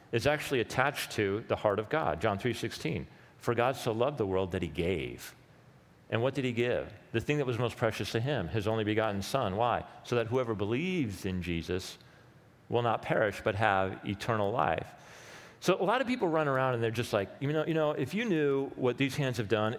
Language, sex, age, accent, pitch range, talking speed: English, male, 40-59, American, 105-145 Hz, 225 wpm